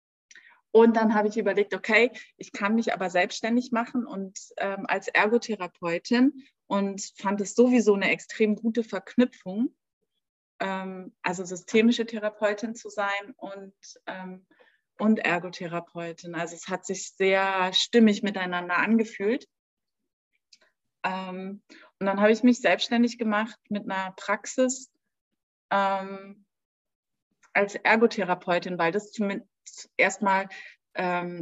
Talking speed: 115 wpm